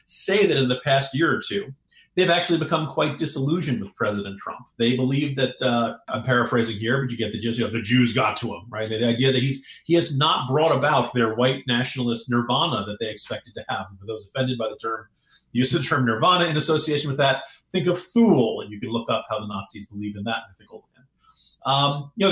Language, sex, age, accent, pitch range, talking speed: English, male, 40-59, American, 115-165 Hz, 235 wpm